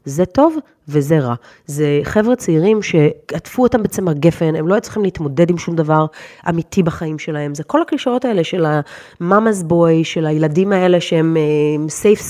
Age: 30-49